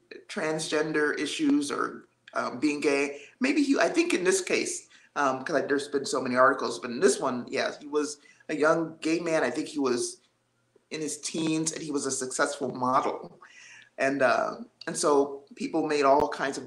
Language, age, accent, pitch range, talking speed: English, 30-49, American, 140-205 Hz, 195 wpm